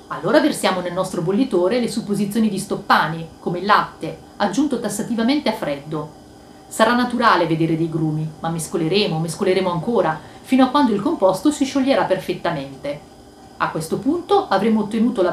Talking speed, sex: 155 wpm, female